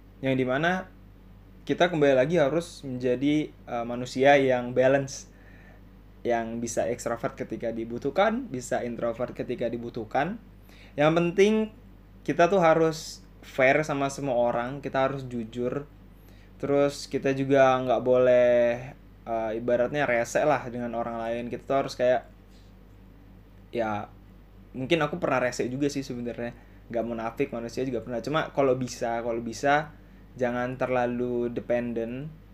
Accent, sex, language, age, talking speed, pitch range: native, male, Indonesian, 20-39, 125 wpm, 110-140 Hz